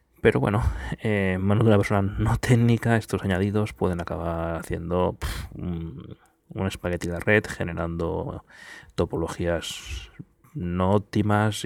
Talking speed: 130 wpm